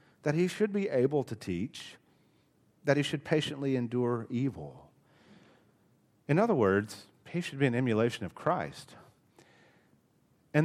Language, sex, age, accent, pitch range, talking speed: English, male, 40-59, American, 110-150 Hz, 135 wpm